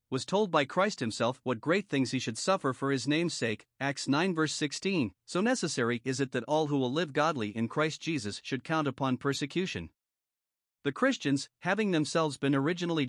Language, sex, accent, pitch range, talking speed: English, male, American, 135-170 Hz, 195 wpm